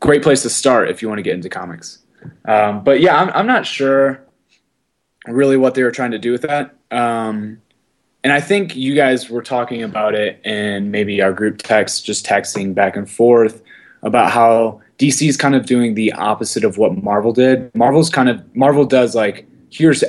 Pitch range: 105-135 Hz